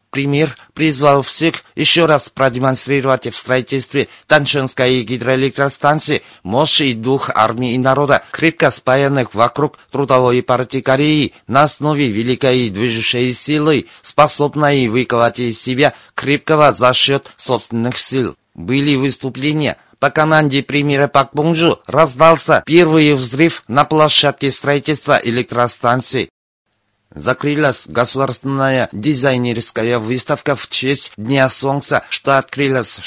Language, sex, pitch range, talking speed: Russian, male, 120-145 Hz, 110 wpm